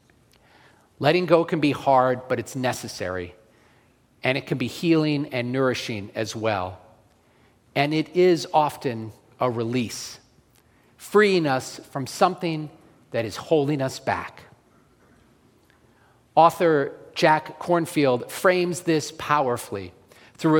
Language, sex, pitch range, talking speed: English, male, 120-160 Hz, 115 wpm